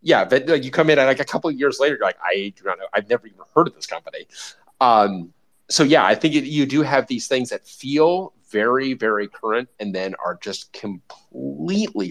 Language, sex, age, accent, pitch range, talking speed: English, male, 30-49, American, 105-155 Hz, 230 wpm